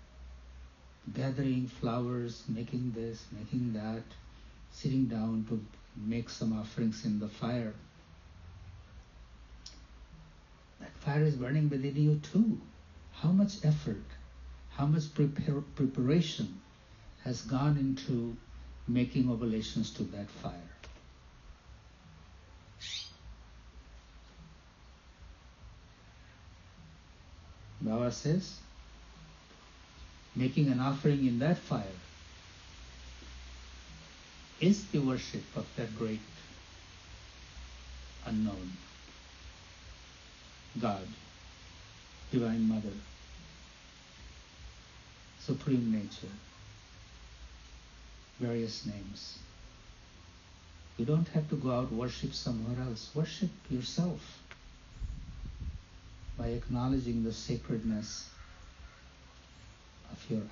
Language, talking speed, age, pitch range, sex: English, 75 wpm, 60-79, 75-120 Hz, male